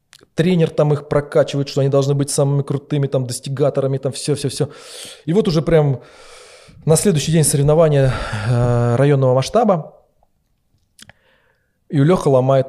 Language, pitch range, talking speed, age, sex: Russian, 125-165 Hz, 140 wpm, 20-39, male